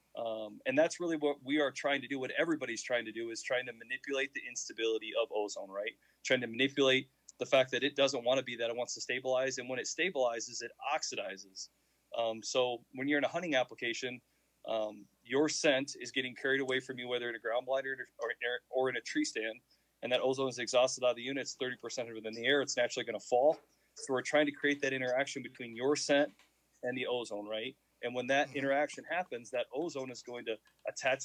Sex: male